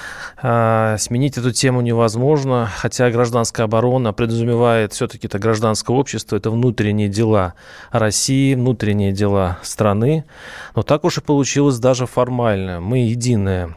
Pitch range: 110-135 Hz